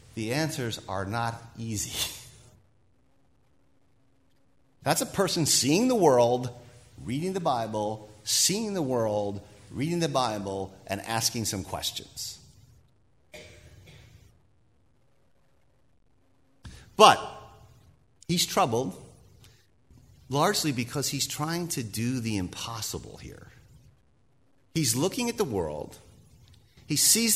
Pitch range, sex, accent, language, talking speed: 105-165 Hz, male, American, English, 95 wpm